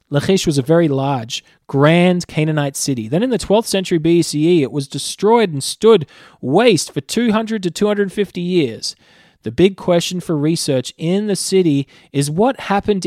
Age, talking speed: 20-39, 165 wpm